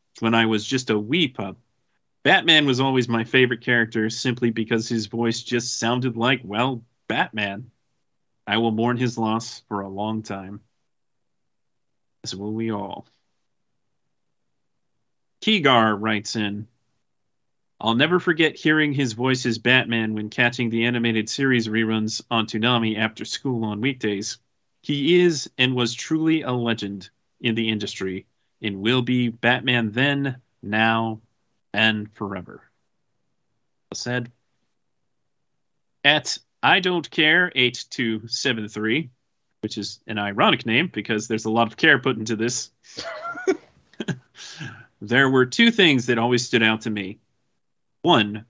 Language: English